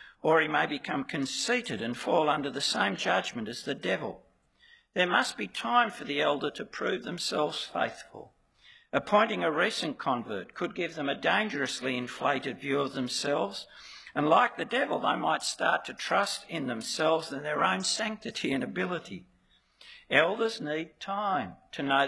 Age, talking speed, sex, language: 60-79, 165 wpm, male, English